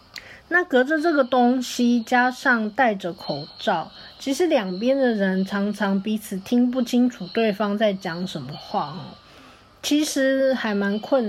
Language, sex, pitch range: Chinese, female, 190-245 Hz